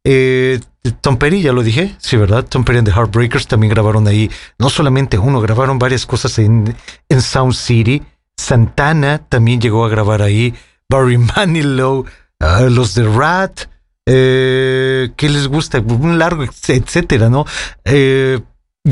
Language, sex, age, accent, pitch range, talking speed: English, male, 40-59, Mexican, 120-160 Hz, 150 wpm